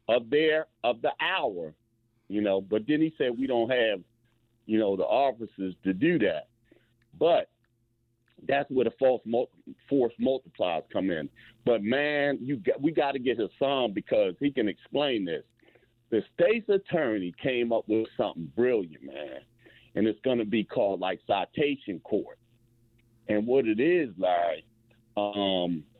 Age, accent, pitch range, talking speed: 40-59, American, 110-140 Hz, 160 wpm